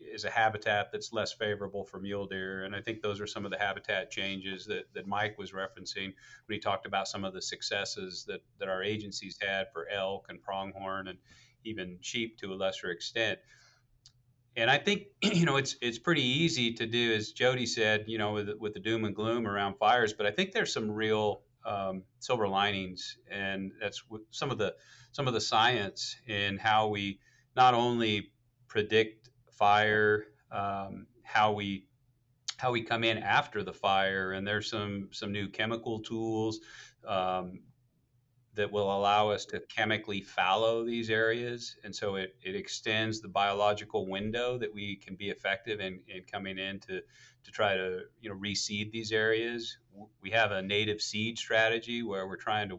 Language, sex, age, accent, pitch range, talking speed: English, male, 40-59, American, 100-115 Hz, 180 wpm